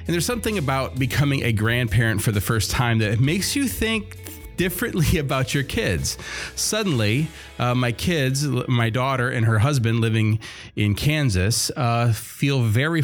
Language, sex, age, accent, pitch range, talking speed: English, male, 30-49, American, 105-135 Hz, 155 wpm